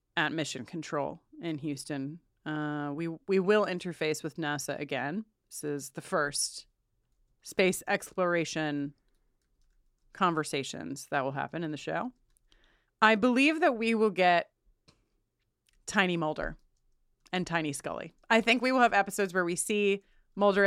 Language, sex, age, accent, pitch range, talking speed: English, female, 30-49, American, 155-210 Hz, 135 wpm